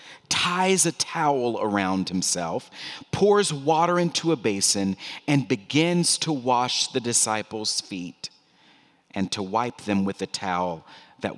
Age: 40-59